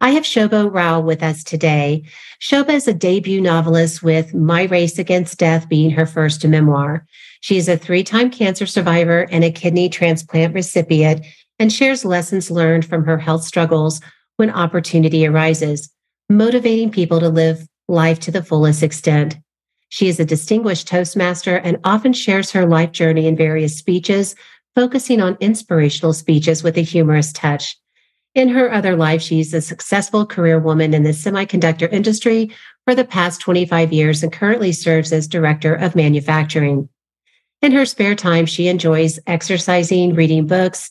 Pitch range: 160-190 Hz